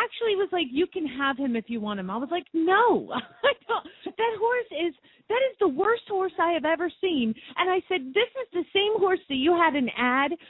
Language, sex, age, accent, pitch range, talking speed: English, female, 30-49, American, 230-340 Hz, 230 wpm